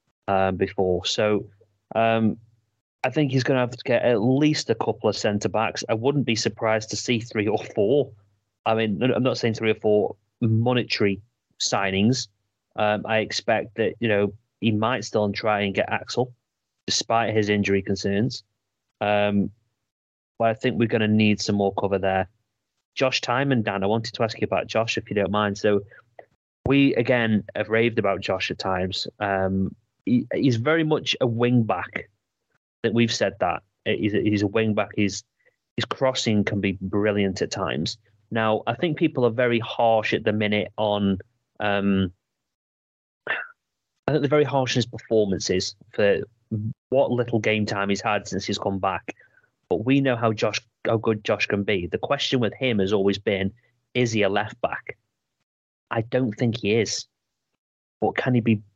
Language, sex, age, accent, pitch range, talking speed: English, male, 30-49, British, 100-120 Hz, 180 wpm